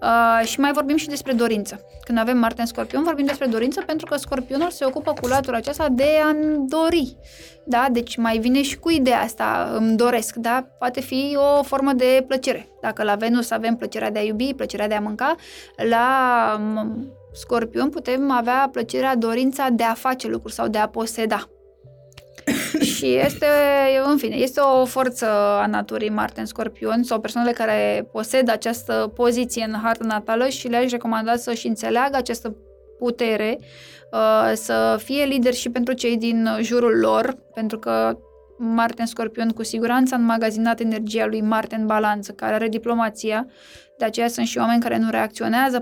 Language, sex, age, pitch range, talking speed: Romanian, female, 20-39, 220-265 Hz, 165 wpm